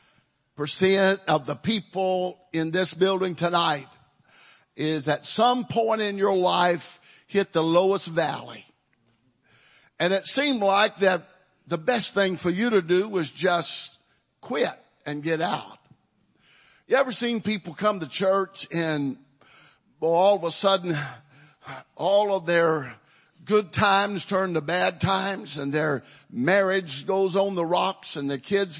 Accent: American